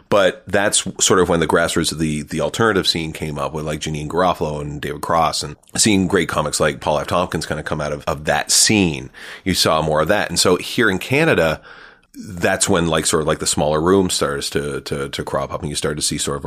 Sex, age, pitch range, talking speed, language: male, 30-49, 75-90 Hz, 250 wpm, English